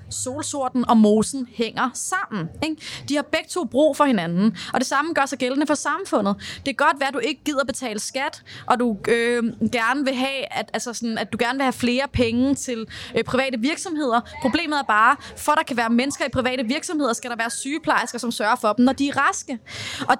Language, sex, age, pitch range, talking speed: Danish, female, 20-39, 235-290 Hz, 225 wpm